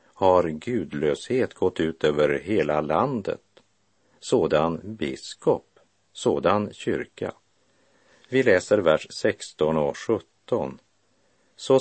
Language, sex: Swedish, male